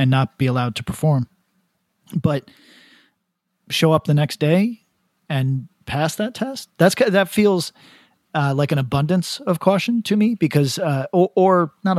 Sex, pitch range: male, 135-180 Hz